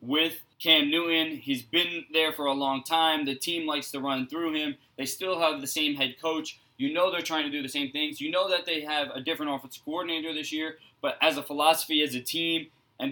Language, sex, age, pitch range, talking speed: English, male, 20-39, 130-160 Hz, 240 wpm